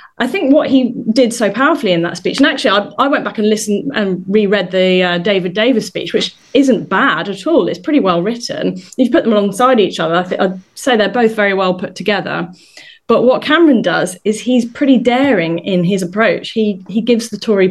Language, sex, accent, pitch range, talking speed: English, female, British, 180-225 Hz, 225 wpm